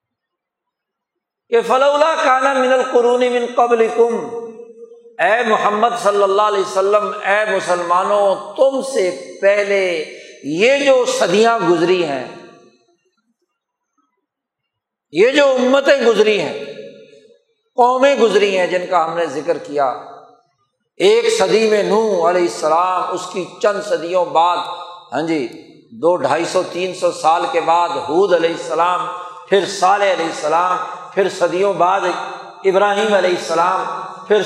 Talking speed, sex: 120 wpm, male